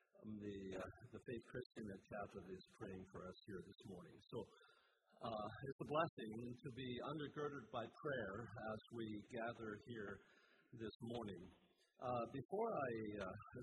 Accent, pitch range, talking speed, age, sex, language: American, 105-120 Hz, 150 wpm, 50-69, male, English